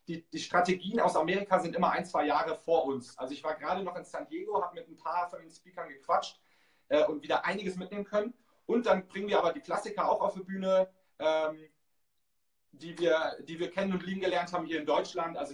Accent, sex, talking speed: German, male, 225 wpm